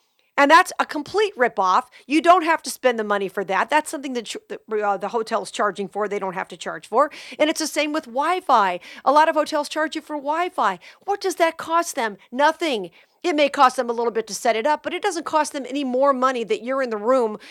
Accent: American